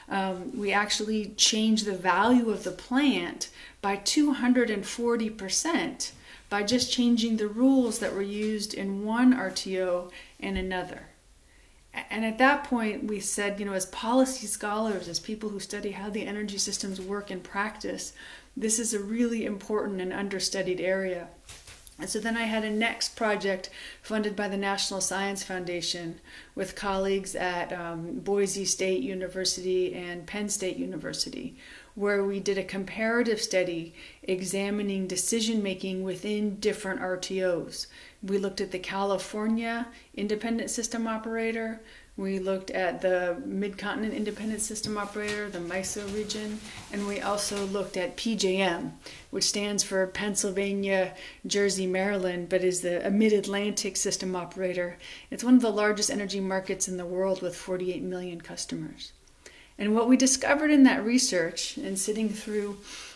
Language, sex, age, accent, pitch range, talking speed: English, female, 30-49, American, 190-220 Hz, 145 wpm